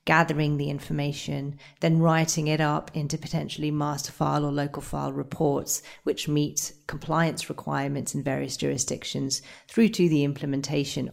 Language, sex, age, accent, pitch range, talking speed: English, female, 40-59, British, 140-165 Hz, 140 wpm